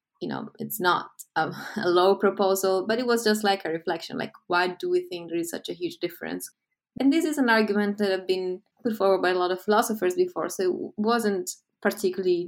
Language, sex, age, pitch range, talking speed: English, female, 20-39, 170-215 Hz, 220 wpm